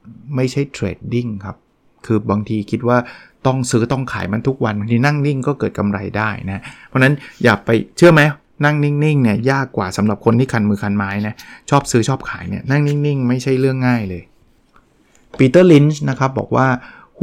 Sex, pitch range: male, 110-145 Hz